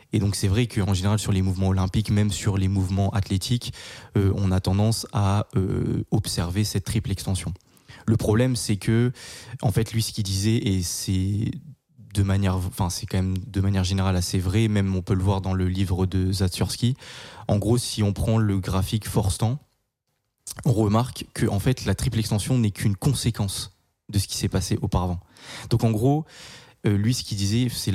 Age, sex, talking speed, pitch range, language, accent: 20-39, male, 200 wpm, 100-120 Hz, French, French